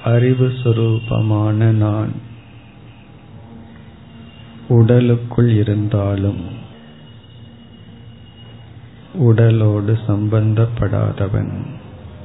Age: 50-69